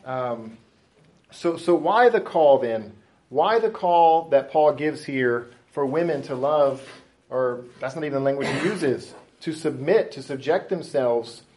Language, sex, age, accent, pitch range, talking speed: English, male, 40-59, American, 135-180 Hz, 160 wpm